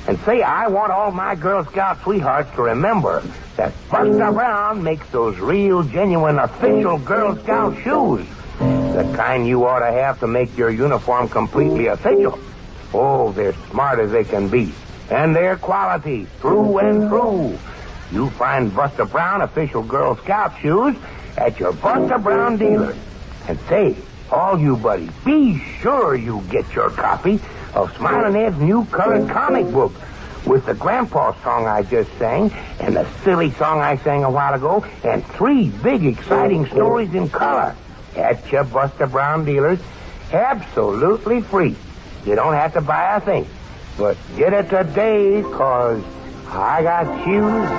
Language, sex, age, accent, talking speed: English, male, 60-79, American, 155 wpm